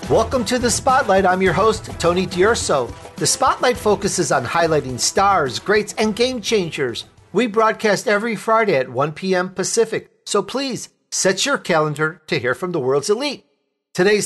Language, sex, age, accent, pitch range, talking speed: English, male, 50-69, American, 155-225 Hz, 165 wpm